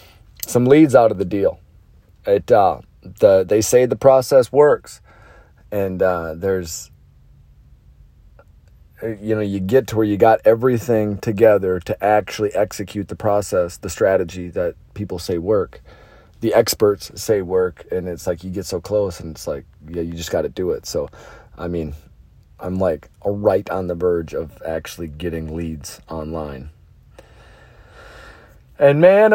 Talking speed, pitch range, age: 155 wpm, 90-115 Hz, 40-59